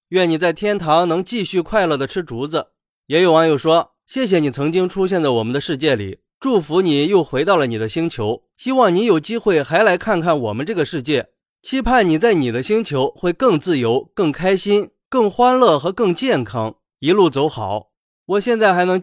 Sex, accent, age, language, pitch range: male, native, 20-39, Chinese, 150-220 Hz